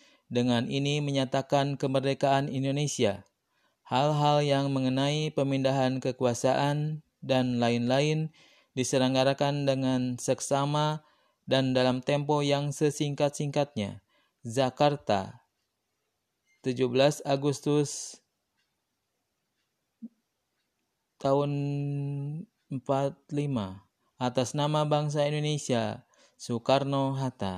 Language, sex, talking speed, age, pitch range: Indonesian, male, 65 wpm, 20-39, 120-140 Hz